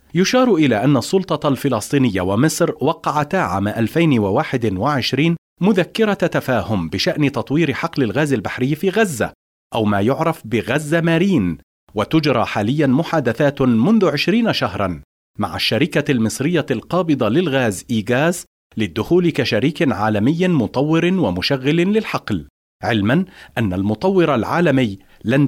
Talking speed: 110 wpm